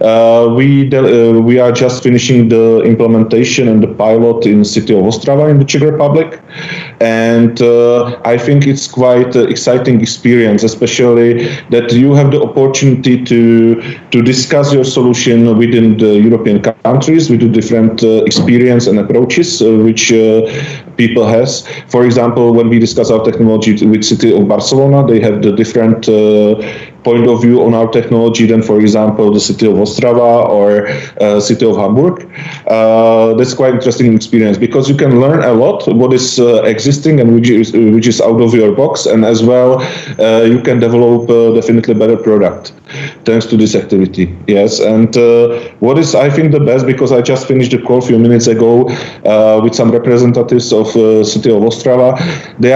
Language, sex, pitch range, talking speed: English, male, 115-130 Hz, 185 wpm